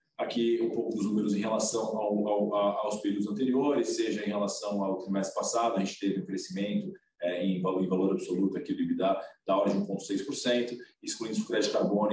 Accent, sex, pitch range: Brazilian, male, 95-120 Hz